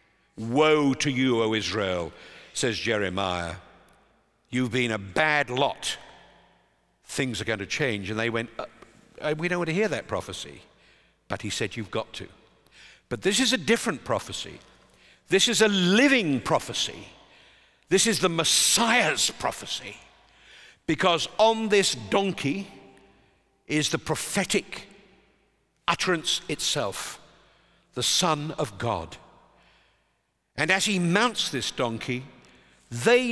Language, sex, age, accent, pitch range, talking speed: English, male, 50-69, British, 120-185 Hz, 125 wpm